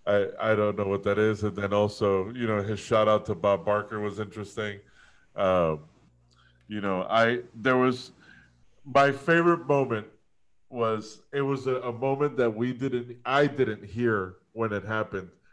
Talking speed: 170 wpm